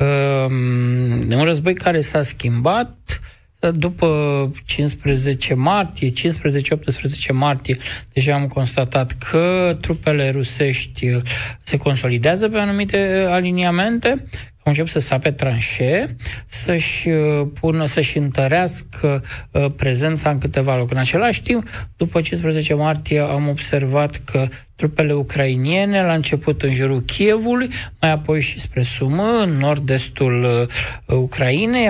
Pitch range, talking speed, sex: 130-175 Hz, 100 wpm, male